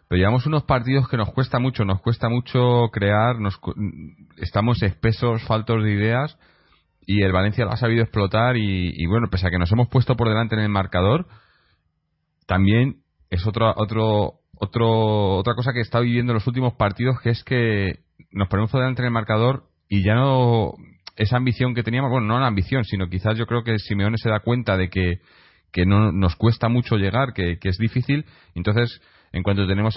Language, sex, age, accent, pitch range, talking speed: Spanish, male, 30-49, Spanish, 95-115 Hz, 200 wpm